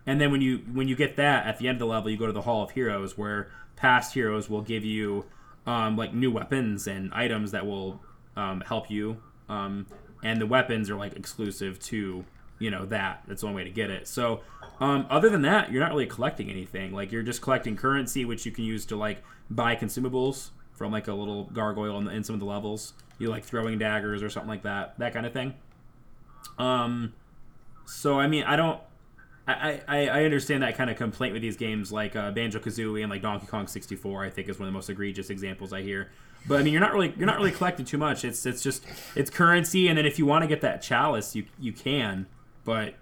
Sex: male